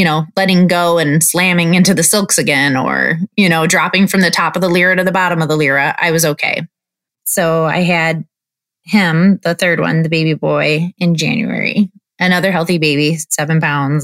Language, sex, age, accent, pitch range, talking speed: English, female, 20-39, American, 160-185 Hz, 195 wpm